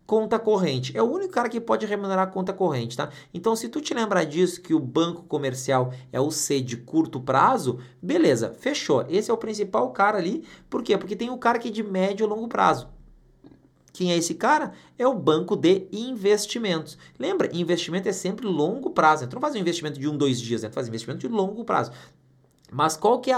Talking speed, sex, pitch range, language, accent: 225 wpm, male, 130-195 Hz, Portuguese, Brazilian